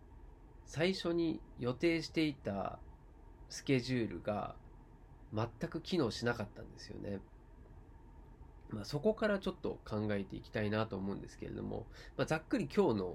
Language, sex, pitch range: Japanese, male, 100-155 Hz